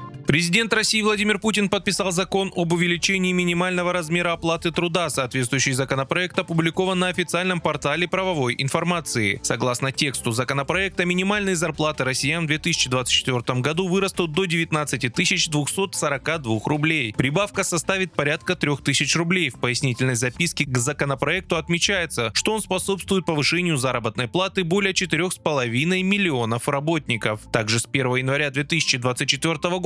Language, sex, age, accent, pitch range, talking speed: Russian, male, 20-39, native, 130-180 Hz, 120 wpm